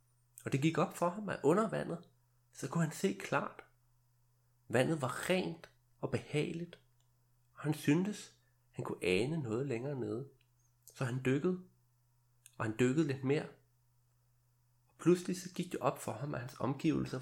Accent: native